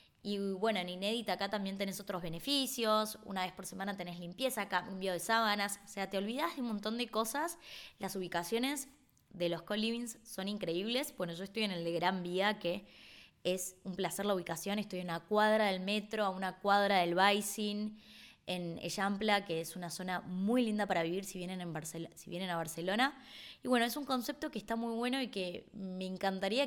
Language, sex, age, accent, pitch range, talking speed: Spanish, female, 20-39, Argentinian, 185-225 Hz, 205 wpm